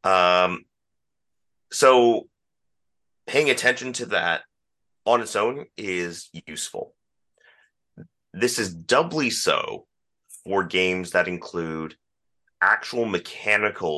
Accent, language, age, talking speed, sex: American, English, 30-49, 90 wpm, male